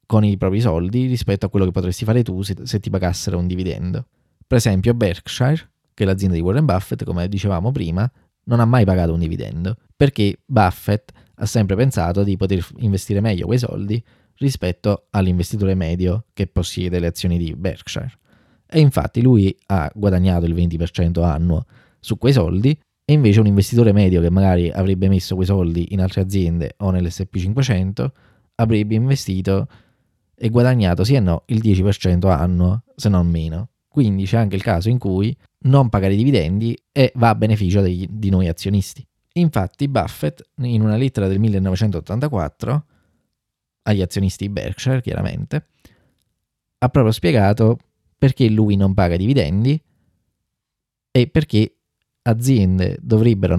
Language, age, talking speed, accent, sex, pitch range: Italian, 20-39, 155 wpm, native, male, 90-115 Hz